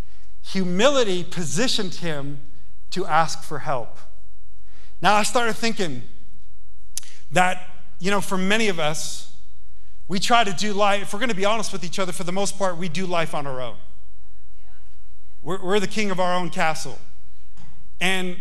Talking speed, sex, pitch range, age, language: 165 wpm, male, 150-205 Hz, 40-59, English